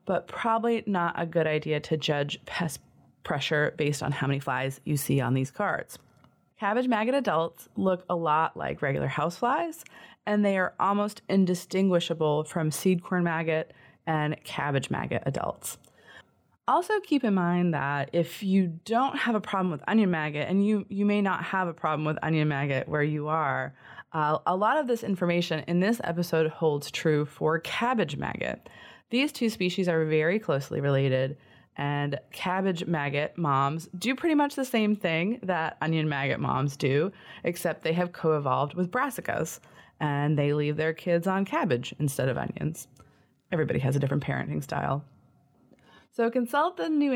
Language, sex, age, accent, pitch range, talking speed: English, female, 20-39, American, 150-195 Hz, 170 wpm